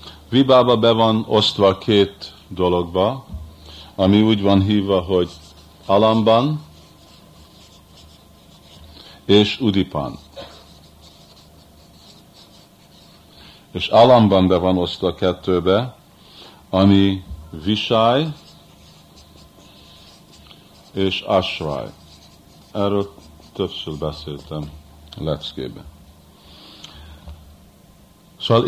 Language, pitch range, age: Hungarian, 80-110 Hz, 50-69